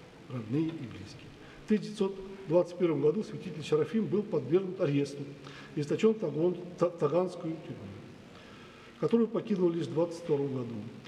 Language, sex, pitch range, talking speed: Russian, male, 145-185 Hz, 115 wpm